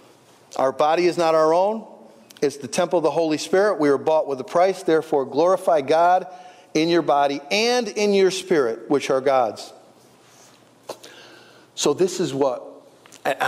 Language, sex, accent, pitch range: English, male, American, 155-235 Hz